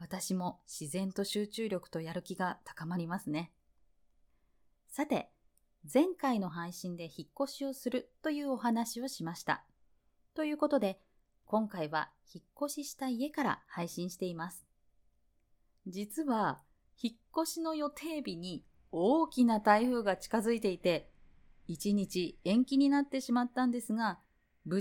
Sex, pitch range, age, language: female, 165-245 Hz, 20-39, Japanese